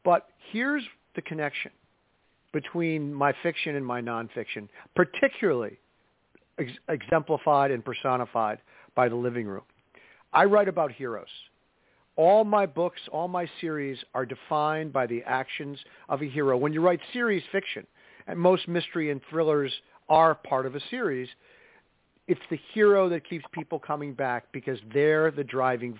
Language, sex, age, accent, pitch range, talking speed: English, male, 50-69, American, 135-180 Hz, 145 wpm